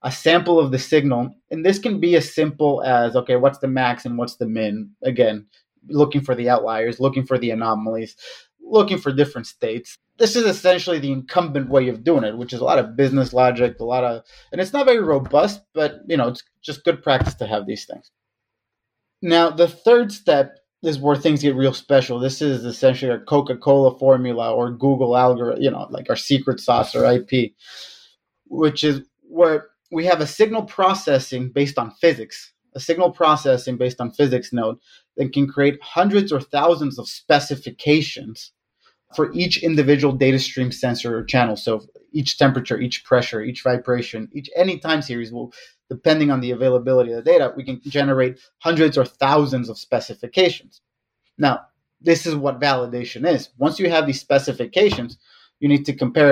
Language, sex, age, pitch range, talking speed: English, male, 30-49, 125-155 Hz, 185 wpm